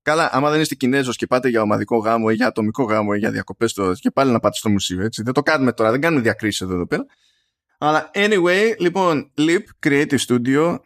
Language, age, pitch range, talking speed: Greek, 20-39, 105-145 Hz, 220 wpm